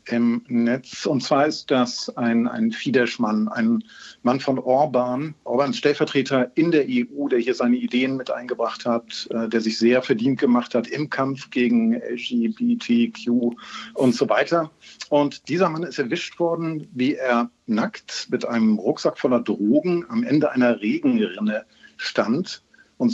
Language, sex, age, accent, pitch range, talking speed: German, male, 50-69, German, 120-160 Hz, 155 wpm